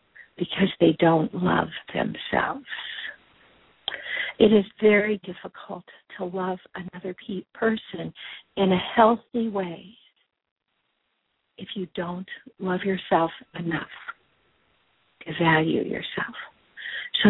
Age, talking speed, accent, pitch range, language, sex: 50-69, 95 wpm, American, 175-215 Hz, English, female